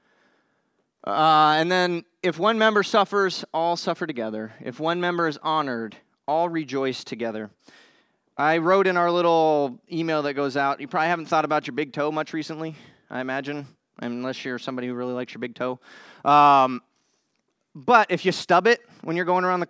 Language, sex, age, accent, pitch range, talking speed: English, male, 20-39, American, 140-180 Hz, 180 wpm